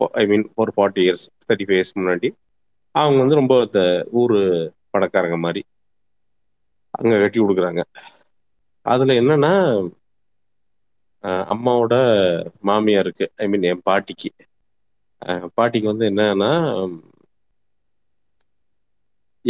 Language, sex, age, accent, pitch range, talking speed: Tamil, male, 30-49, native, 95-115 Hz, 90 wpm